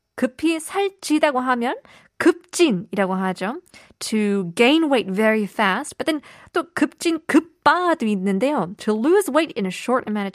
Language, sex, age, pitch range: Korean, female, 20-39, 190-280 Hz